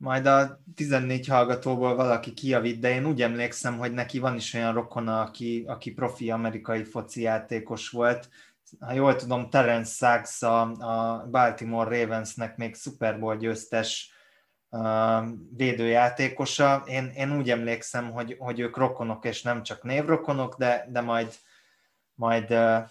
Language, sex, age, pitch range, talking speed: Hungarian, male, 20-39, 115-130 Hz, 130 wpm